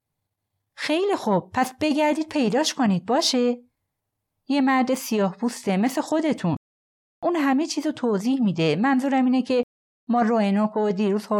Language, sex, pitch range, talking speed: Persian, female, 155-220 Hz, 130 wpm